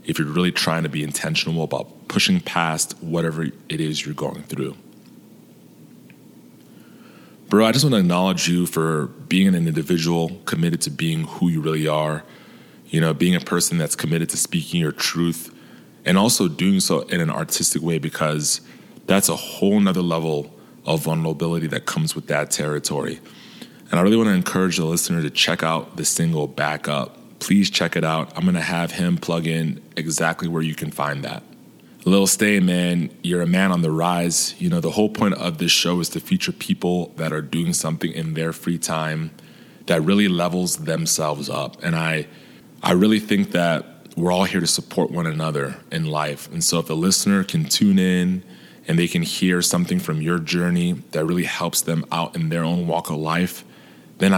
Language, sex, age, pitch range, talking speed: English, male, 20-39, 80-95 Hz, 190 wpm